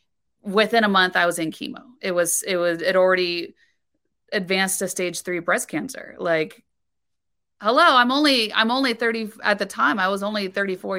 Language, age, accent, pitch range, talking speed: English, 30-49, American, 180-225 Hz, 180 wpm